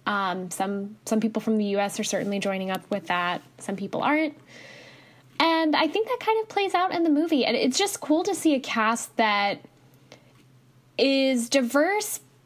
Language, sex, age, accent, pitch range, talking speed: English, female, 10-29, American, 205-275 Hz, 190 wpm